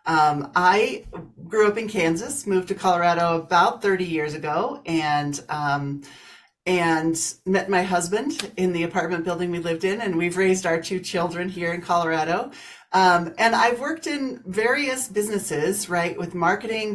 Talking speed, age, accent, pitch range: 160 wpm, 40-59, American, 165-210 Hz